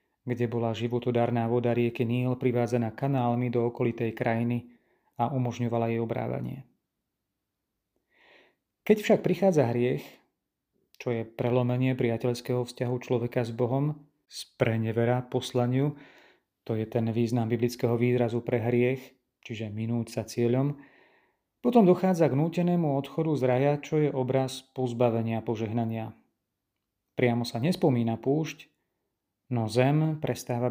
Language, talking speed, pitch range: Slovak, 115 wpm, 115-140 Hz